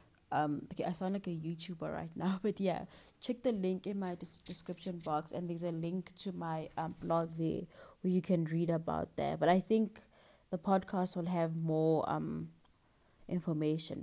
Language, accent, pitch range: English, South African, 160-190 Hz